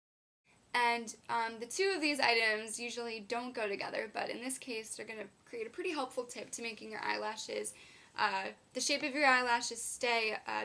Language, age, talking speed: English, 10-29, 195 wpm